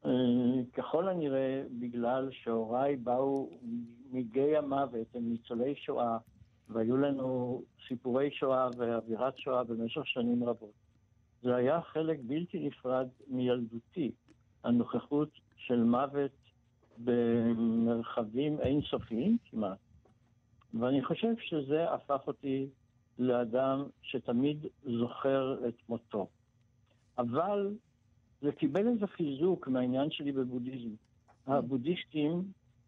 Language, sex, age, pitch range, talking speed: Hebrew, male, 60-79, 120-140 Hz, 95 wpm